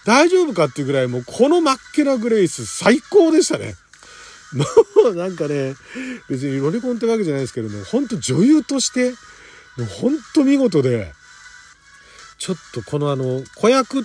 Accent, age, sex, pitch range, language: native, 40-59, male, 150-250 Hz, Japanese